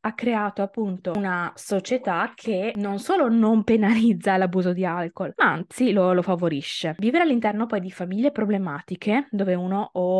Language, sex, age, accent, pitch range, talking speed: Italian, female, 20-39, native, 180-225 Hz, 160 wpm